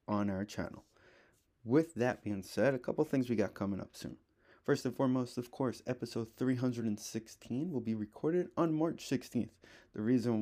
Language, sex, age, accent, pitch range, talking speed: English, male, 20-39, American, 105-130 Hz, 175 wpm